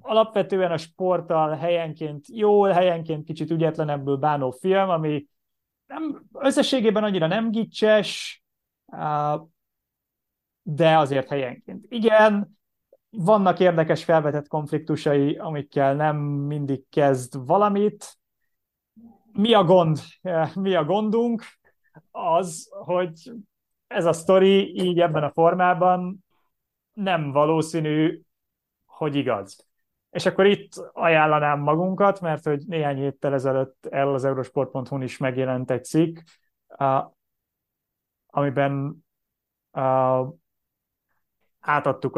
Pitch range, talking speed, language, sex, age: 140-180 Hz, 95 wpm, Hungarian, male, 30-49